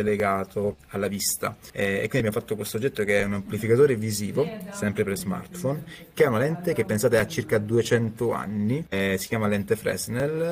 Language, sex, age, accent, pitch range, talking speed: Italian, male, 20-39, native, 100-115 Hz, 190 wpm